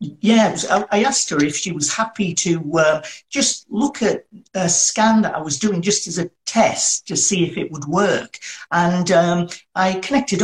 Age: 50-69